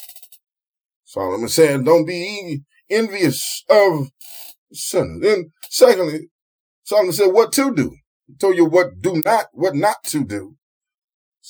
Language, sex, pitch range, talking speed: English, male, 160-235 Hz, 130 wpm